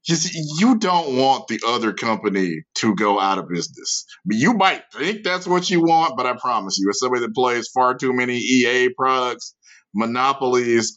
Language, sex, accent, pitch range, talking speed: English, male, American, 120-155 Hz, 185 wpm